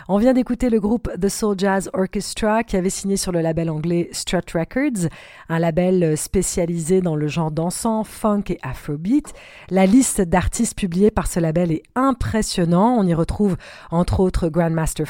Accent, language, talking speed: French, French, 170 wpm